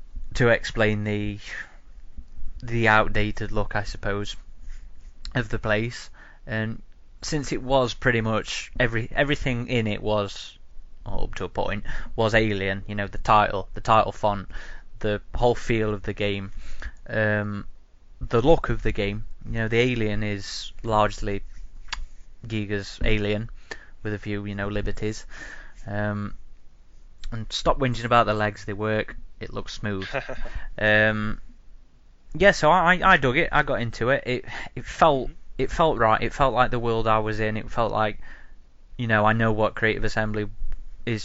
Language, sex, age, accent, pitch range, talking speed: English, male, 20-39, British, 105-120 Hz, 160 wpm